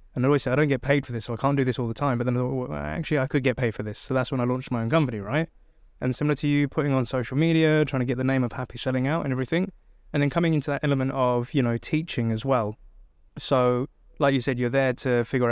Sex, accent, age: male, British, 20-39